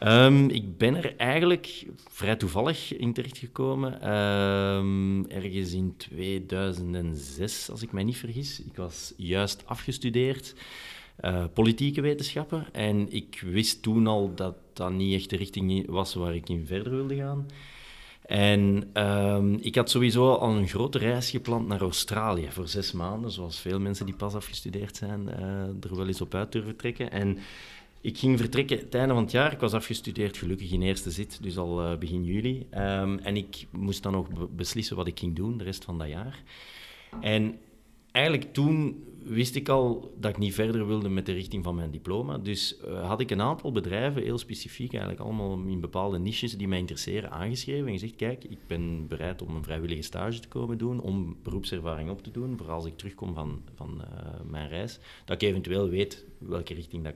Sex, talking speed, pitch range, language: male, 180 wpm, 90-115 Hz, Dutch